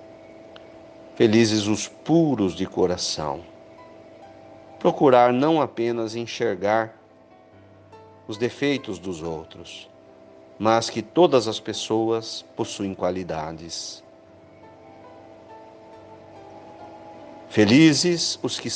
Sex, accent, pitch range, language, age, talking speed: male, Brazilian, 85-120 Hz, Portuguese, 50-69, 75 wpm